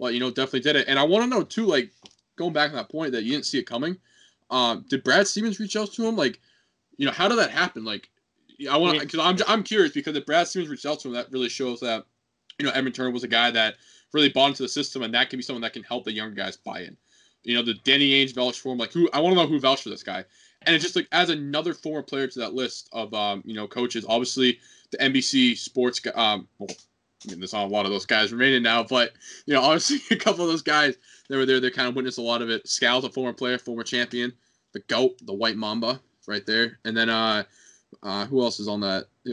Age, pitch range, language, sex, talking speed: 20-39, 115-140 Hz, English, male, 275 wpm